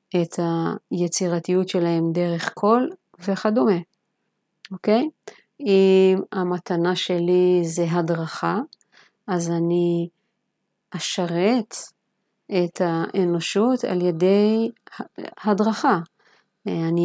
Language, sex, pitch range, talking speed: Hebrew, female, 180-225 Hz, 75 wpm